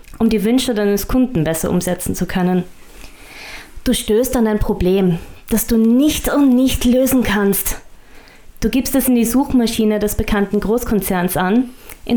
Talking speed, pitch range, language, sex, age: 160 wpm, 185-230 Hz, German, female, 20-39